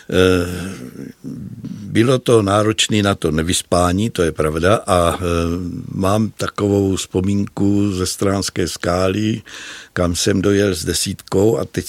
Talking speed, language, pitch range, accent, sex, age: 115 wpm, Czech, 90-110 Hz, native, male, 60-79